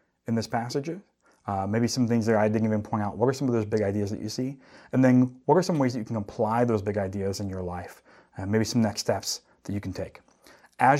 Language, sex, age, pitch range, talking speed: English, male, 30-49, 105-125 Hz, 265 wpm